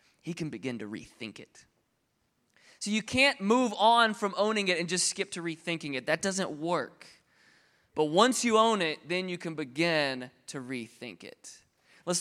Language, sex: English, male